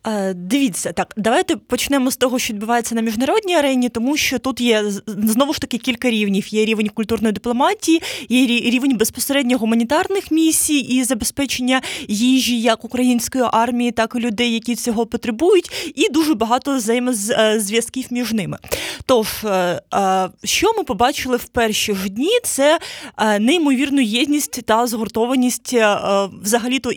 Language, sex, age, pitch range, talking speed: Ukrainian, female, 20-39, 215-270 Hz, 135 wpm